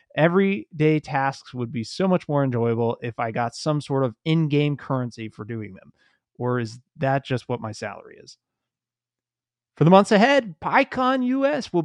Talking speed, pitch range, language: 170 wpm, 125-160 Hz, English